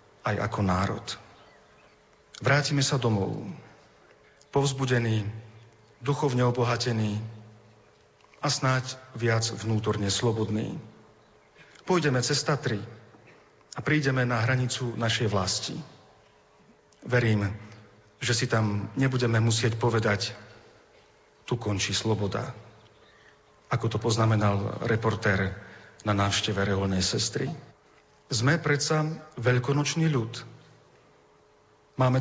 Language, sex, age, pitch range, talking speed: Slovak, male, 40-59, 110-135 Hz, 85 wpm